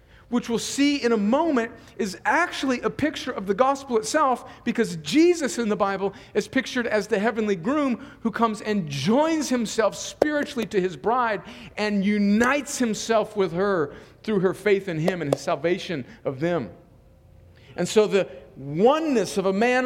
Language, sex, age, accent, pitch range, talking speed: English, male, 50-69, American, 200-260 Hz, 170 wpm